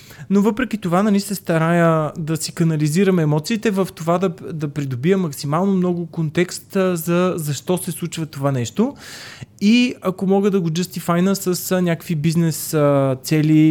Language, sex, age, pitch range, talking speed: Bulgarian, male, 20-39, 155-175 Hz, 150 wpm